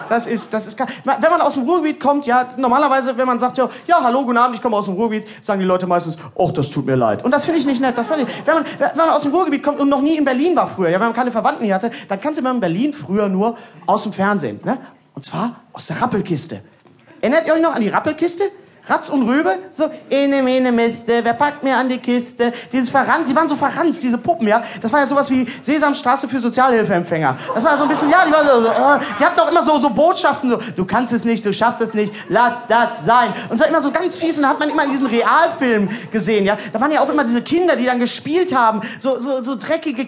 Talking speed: 265 wpm